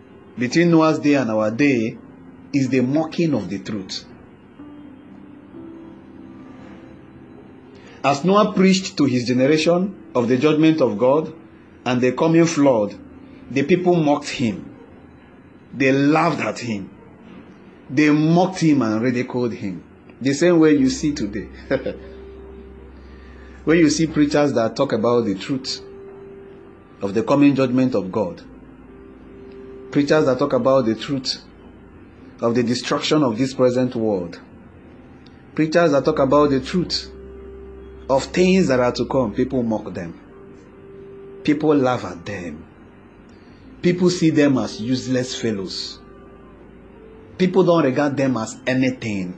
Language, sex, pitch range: English, male, 110-160 Hz